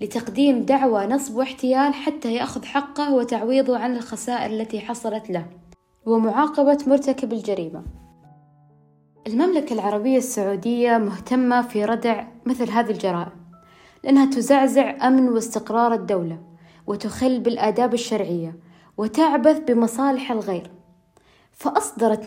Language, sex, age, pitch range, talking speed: Arabic, female, 20-39, 205-255 Hz, 100 wpm